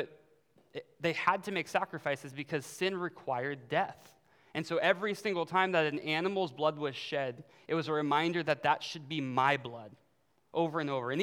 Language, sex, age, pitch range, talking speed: English, male, 20-39, 135-175 Hz, 180 wpm